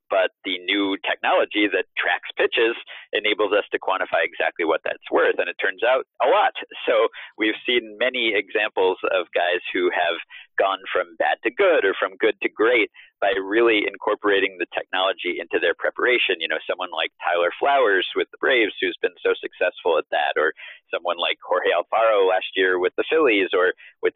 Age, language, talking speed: 40-59, English, 185 wpm